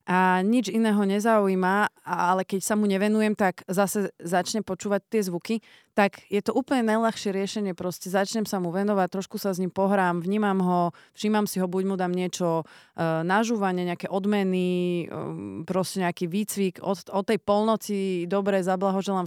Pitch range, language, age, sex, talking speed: 170-200 Hz, Slovak, 30-49, female, 170 wpm